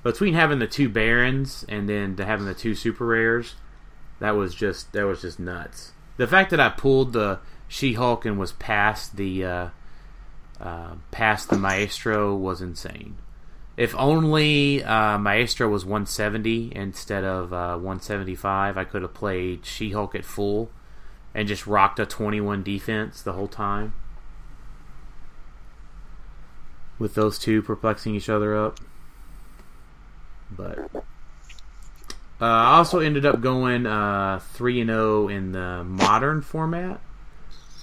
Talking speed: 145 wpm